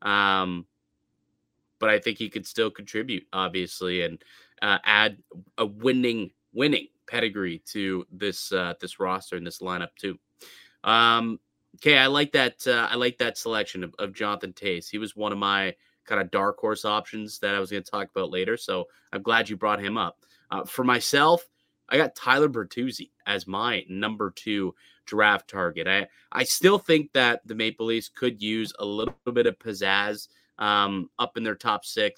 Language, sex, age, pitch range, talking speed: English, male, 30-49, 100-120 Hz, 185 wpm